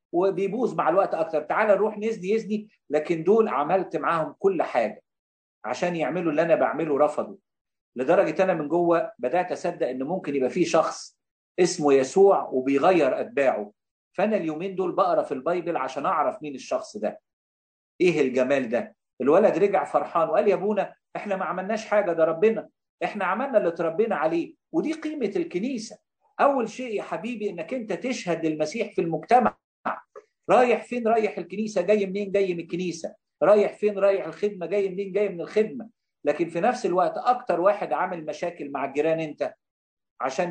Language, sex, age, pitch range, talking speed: English, male, 50-69, 160-220 Hz, 160 wpm